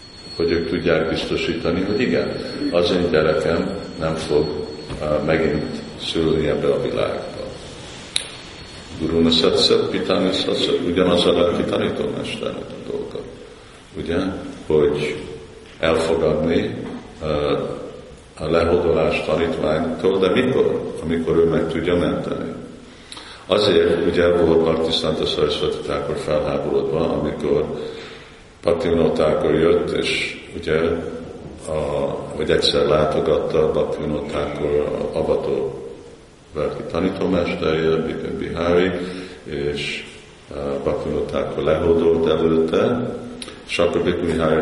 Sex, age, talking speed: male, 50-69, 90 wpm